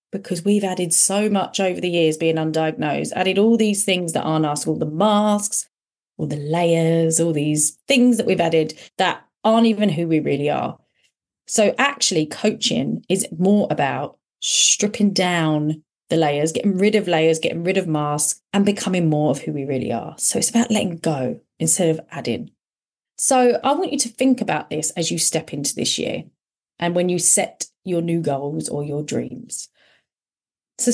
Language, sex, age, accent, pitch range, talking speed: English, female, 30-49, British, 160-230 Hz, 185 wpm